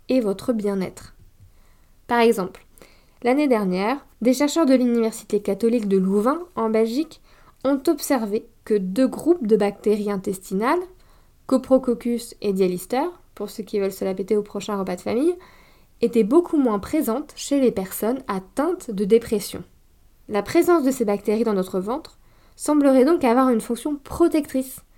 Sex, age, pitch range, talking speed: female, 20-39, 205-270 Hz, 150 wpm